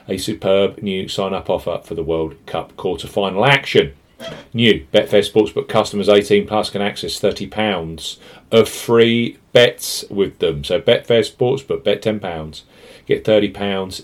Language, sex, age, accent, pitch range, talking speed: English, male, 40-59, British, 100-135 Hz, 135 wpm